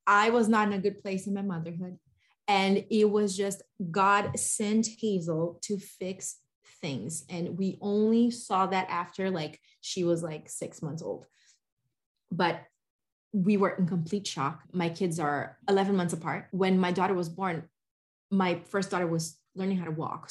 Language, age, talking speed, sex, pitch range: English, 20-39, 170 wpm, female, 170-200 Hz